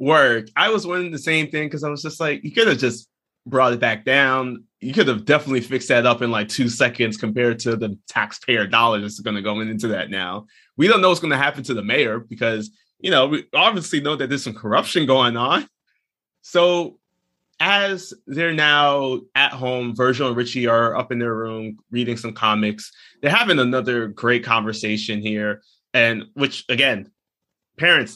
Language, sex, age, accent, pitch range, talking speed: English, male, 20-39, American, 110-135 Hz, 195 wpm